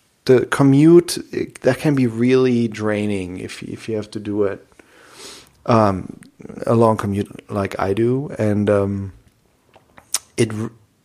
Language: English